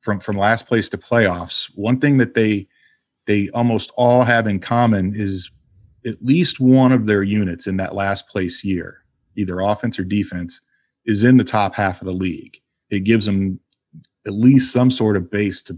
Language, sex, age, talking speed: English, male, 30-49, 190 wpm